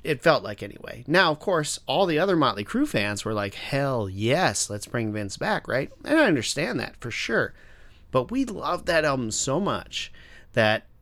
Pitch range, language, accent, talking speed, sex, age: 105-140 Hz, English, American, 195 wpm, male, 30-49